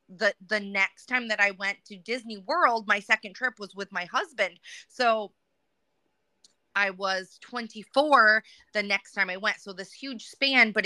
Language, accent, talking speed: English, American, 170 wpm